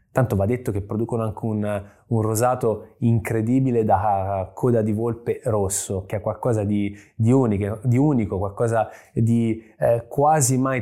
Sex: male